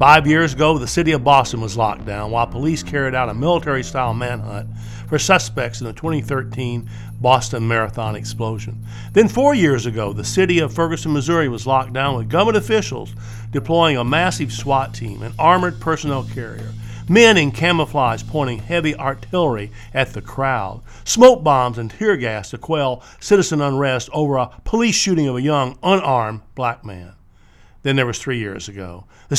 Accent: American